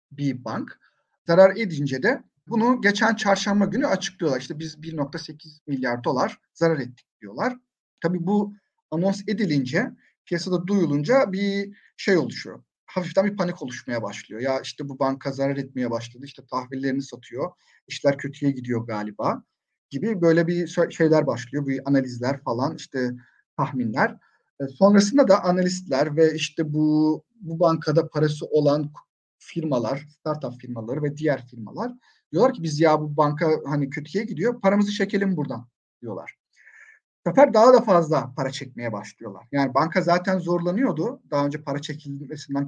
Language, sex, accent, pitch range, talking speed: Turkish, male, native, 135-195 Hz, 140 wpm